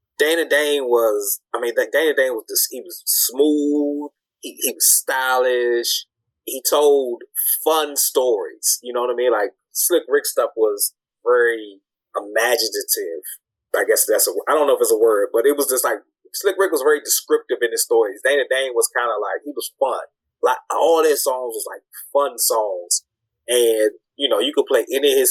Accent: American